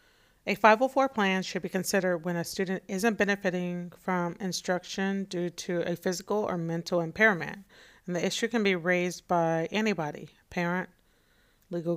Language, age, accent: English, 40-59, American